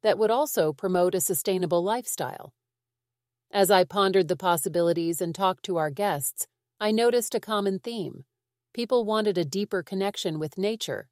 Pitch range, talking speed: 165-200 Hz, 155 wpm